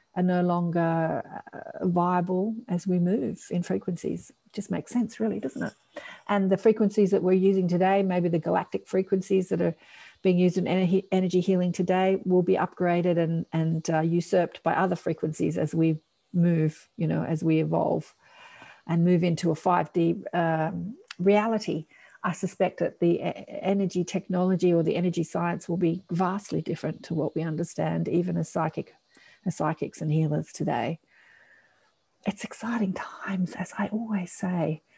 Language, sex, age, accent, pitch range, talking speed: English, female, 50-69, Australian, 165-190 Hz, 160 wpm